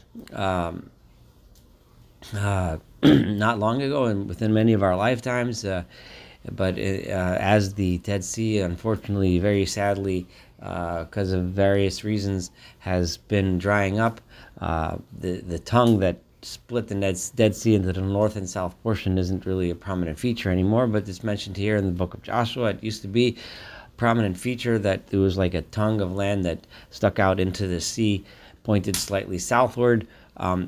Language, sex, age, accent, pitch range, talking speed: English, male, 40-59, American, 90-115 Hz, 170 wpm